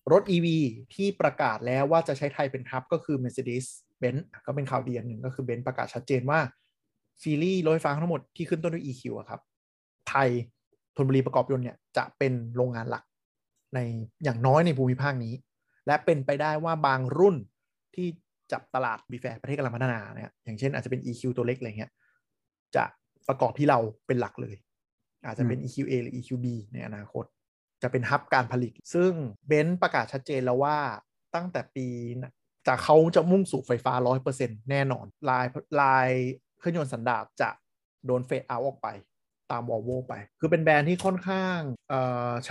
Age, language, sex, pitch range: 20-39, Thai, male, 125-160 Hz